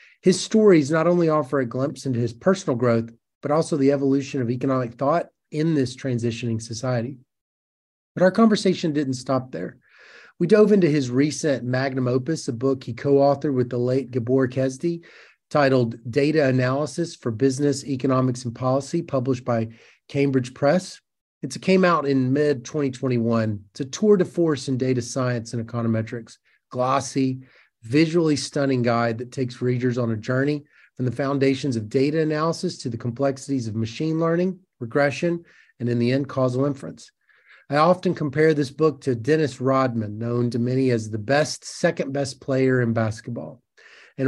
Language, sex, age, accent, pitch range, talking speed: English, male, 30-49, American, 125-155 Hz, 165 wpm